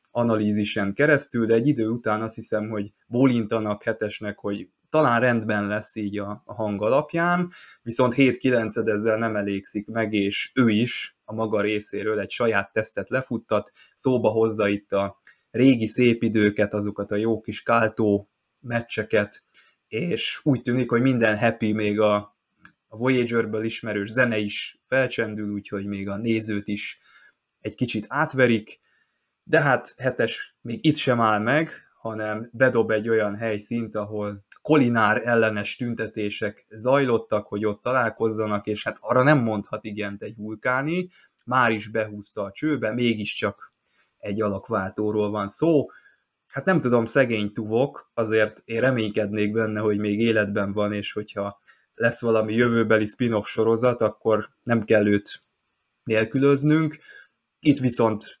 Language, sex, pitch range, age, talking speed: Hungarian, male, 105-120 Hz, 20-39, 140 wpm